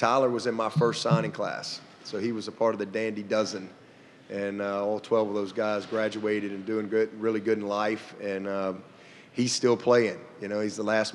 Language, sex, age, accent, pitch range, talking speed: English, male, 30-49, American, 100-115 Hz, 220 wpm